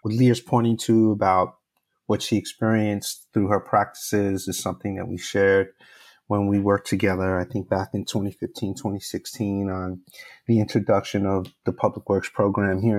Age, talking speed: 30-49, 160 wpm